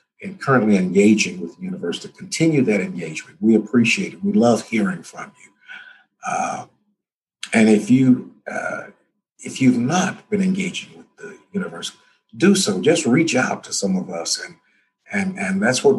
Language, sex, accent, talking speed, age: English, male, American, 170 wpm, 50-69